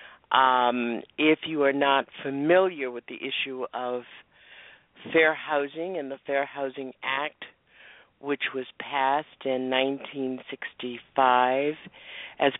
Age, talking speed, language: 50-69, 110 wpm, English